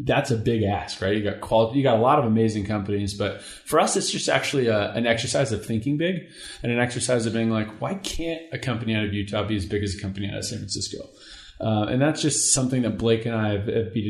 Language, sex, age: English, male, 20-39